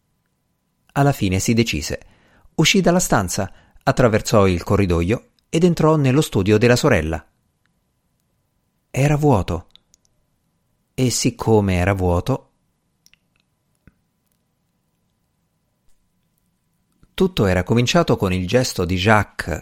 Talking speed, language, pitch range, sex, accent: 90 wpm, Italian, 95-140 Hz, male, native